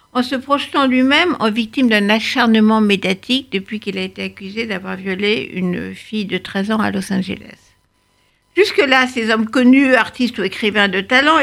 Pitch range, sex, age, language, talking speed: 195-245 Hz, female, 60-79, French, 175 wpm